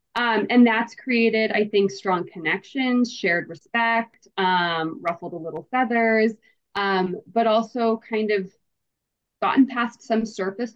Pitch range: 190-230 Hz